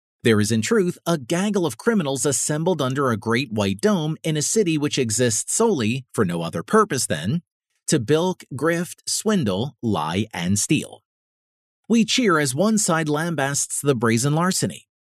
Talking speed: 165 wpm